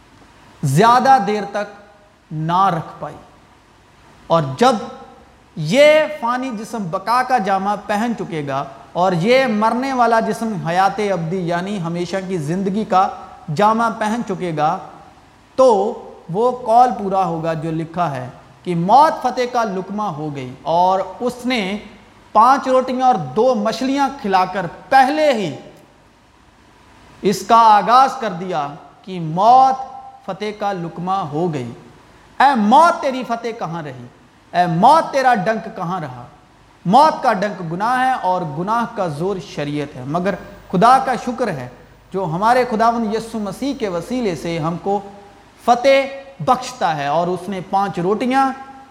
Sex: male